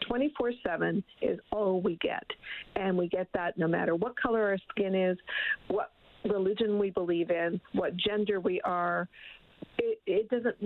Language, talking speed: English, 150 wpm